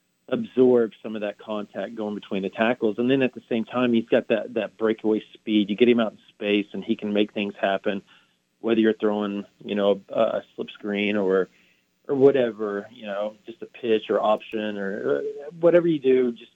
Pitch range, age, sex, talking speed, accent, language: 105-125 Hz, 40-59, male, 210 wpm, American, English